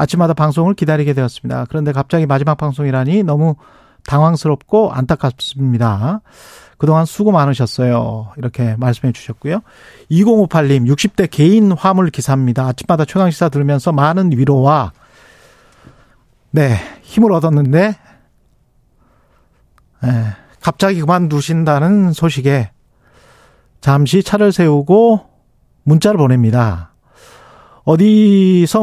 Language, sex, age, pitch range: Korean, male, 40-59, 125-170 Hz